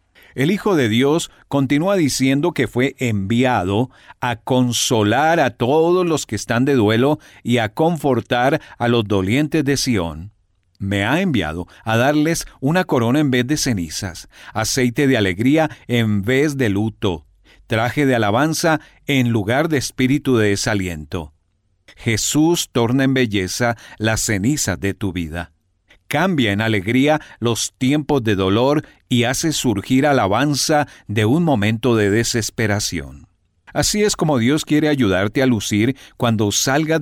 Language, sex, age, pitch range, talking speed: Spanish, male, 50-69, 105-140 Hz, 145 wpm